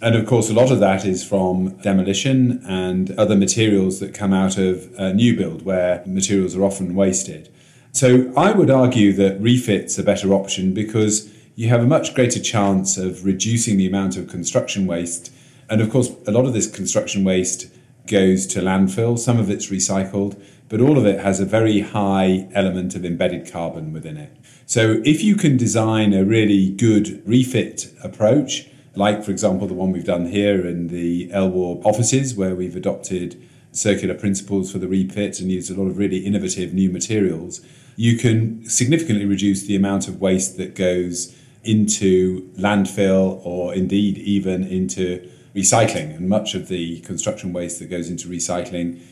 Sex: male